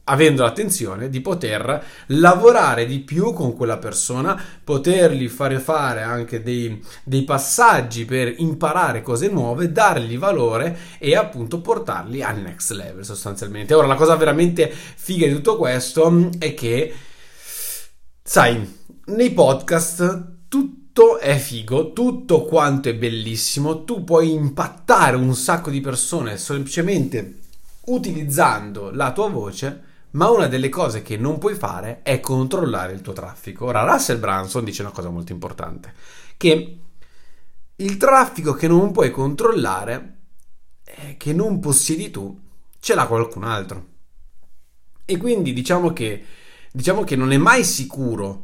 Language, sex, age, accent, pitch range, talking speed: Italian, male, 30-49, native, 115-160 Hz, 135 wpm